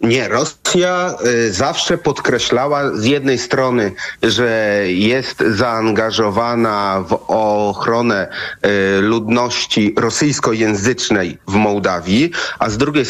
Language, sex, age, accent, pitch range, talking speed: Polish, male, 40-59, native, 110-135 Hz, 85 wpm